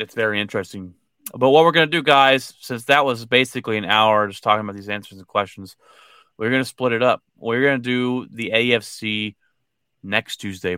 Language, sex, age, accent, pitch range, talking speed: English, male, 30-49, American, 110-120 Hz, 205 wpm